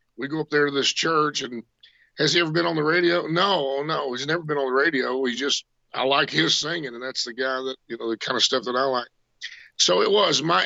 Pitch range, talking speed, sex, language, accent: 120-145 Hz, 270 wpm, male, English, American